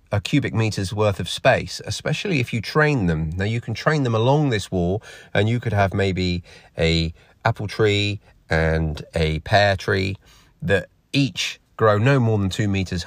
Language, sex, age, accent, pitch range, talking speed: English, male, 30-49, British, 90-115 Hz, 180 wpm